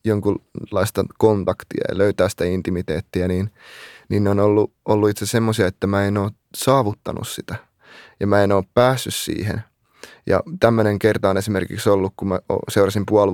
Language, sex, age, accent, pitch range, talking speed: Finnish, male, 20-39, native, 95-115 Hz, 160 wpm